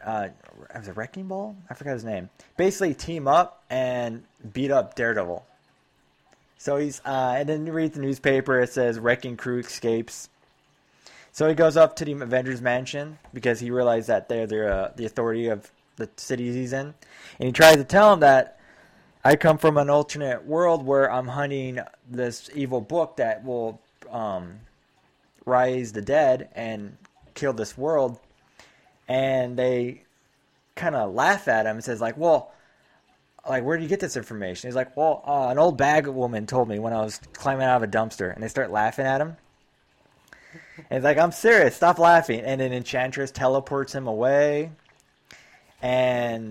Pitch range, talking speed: 115-145 Hz, 175 wpm